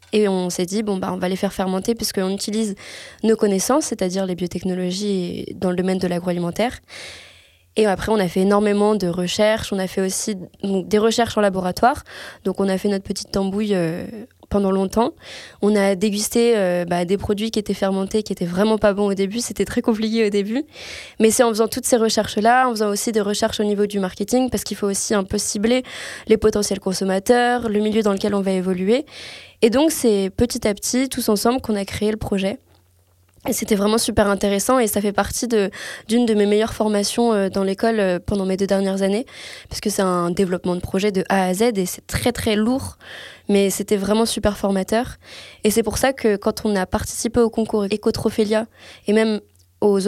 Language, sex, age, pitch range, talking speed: French, female, 20-39, 195-225 Hz, 210 wpm